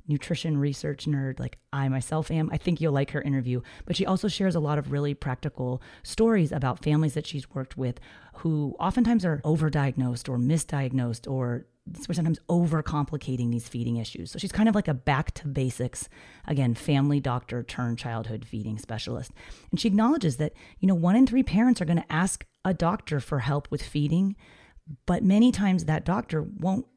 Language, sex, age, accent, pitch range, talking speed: English, female, 30-49, American, 130-165 Hz, 185 wpm